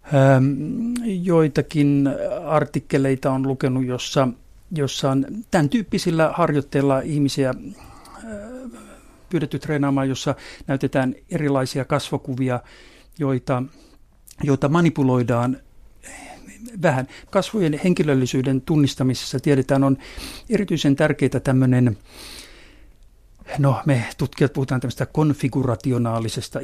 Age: 60-79